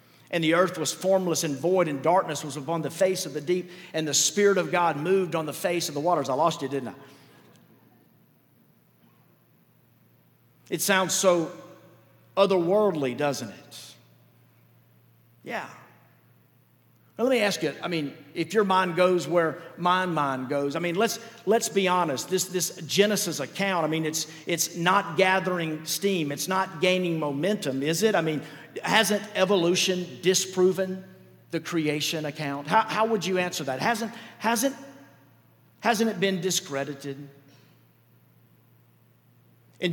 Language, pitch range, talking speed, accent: English, 145-185 Hz, 145 wpm, American